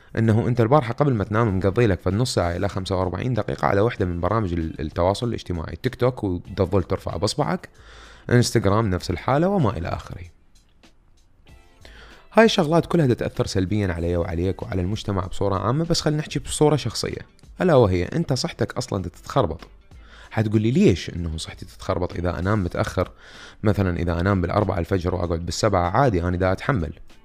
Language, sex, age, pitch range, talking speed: Arabic, male, 30-49, 90-120 Hz, 160 wpm